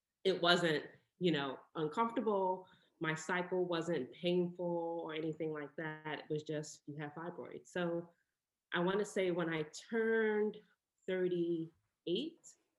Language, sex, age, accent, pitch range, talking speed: English, female, 20-39, American, 145-170 Hz, 130 wpm